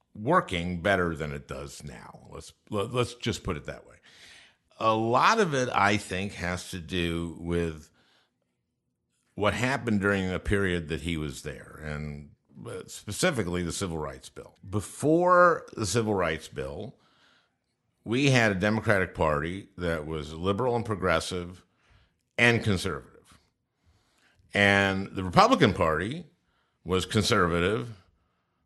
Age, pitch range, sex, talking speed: 50-69, 80-105 Hz, male, 130 wpm